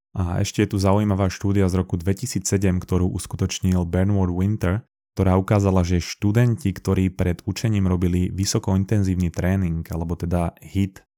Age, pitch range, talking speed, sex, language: 20-39, 90-100 Hz, 140 wpm, male, Slovak